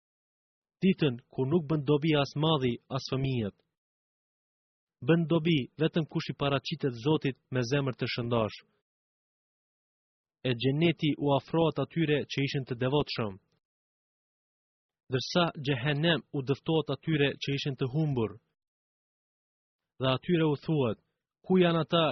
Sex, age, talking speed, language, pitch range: male, 30-49, 115 wpm, English, 130-160 Hz